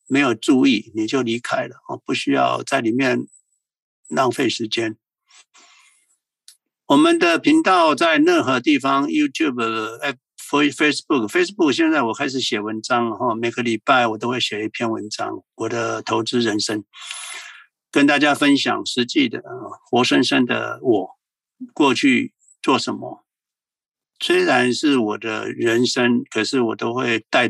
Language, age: Chinese, 60-79